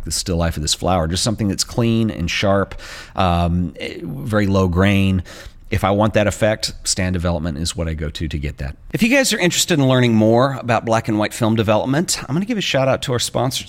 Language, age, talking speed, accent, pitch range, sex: English, 40-59, 235 wpm, American, 90-115 Hz, male